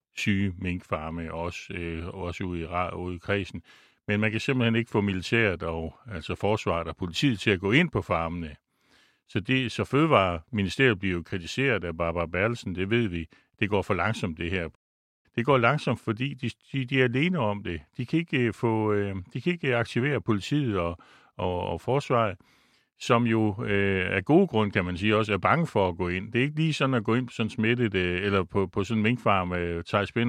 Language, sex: Danish, male